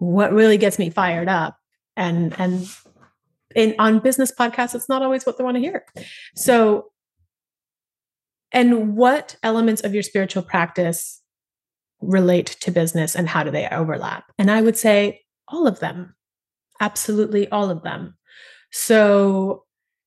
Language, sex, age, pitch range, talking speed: English, female, 30-49, 170-230 Hz, 145 wpm